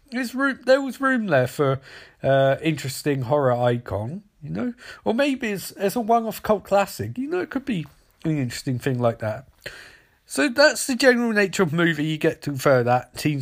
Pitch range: 120-170 Hz